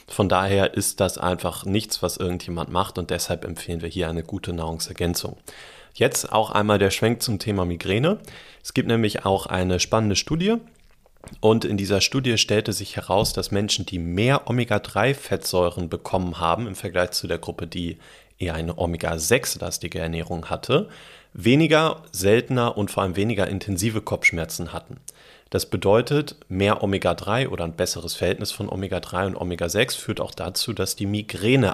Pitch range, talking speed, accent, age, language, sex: 90-110 Hz, 160 wpm, German, 30-49, German, male